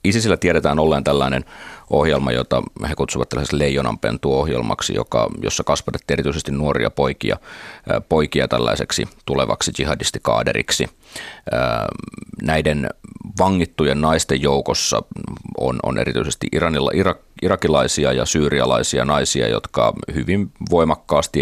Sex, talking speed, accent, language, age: male, 100 wpm, native, Finnish, 30-49